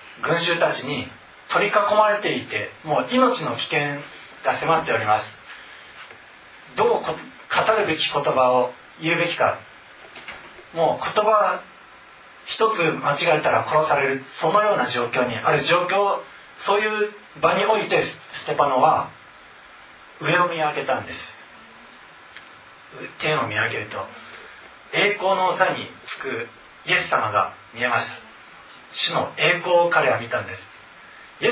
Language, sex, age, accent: Japanese, male, 40-59, native